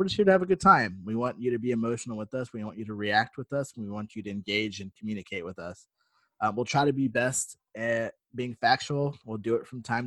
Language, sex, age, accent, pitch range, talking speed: English, male, 20-39, American, 105-125 Hz, 275 wpm